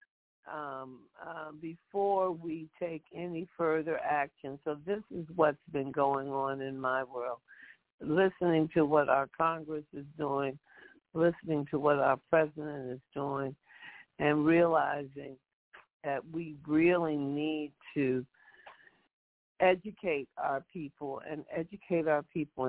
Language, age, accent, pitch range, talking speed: English, 60-79, American, 135-160 Hz, 120 wpm